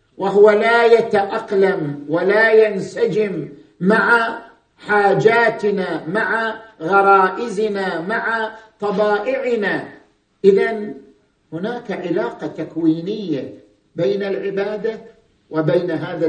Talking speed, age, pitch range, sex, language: 70 wpm, 50-69, 185-245 Hz, male, Arabic